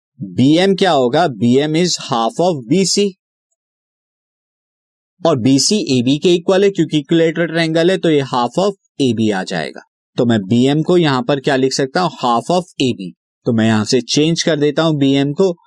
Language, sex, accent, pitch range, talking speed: Hindi, male, native, 130-175 Hz, 185 wpm